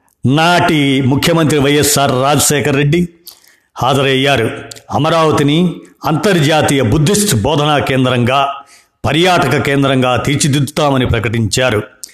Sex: male